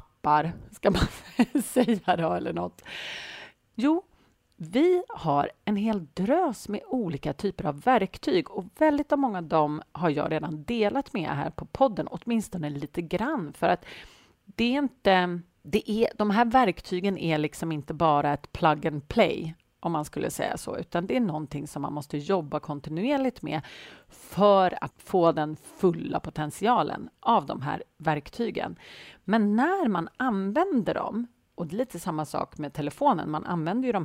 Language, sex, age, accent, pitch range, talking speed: Swedish, female, 40-59, native, 150-235 Hz, 165 wpm